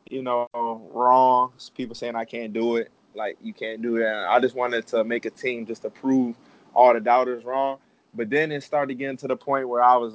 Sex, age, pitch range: male, 20-39, 115-135 Hz